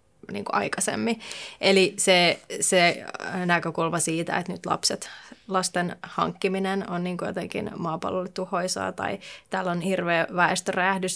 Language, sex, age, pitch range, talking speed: Finnish, female, 20-39, 180-195 Hz, 120 wpm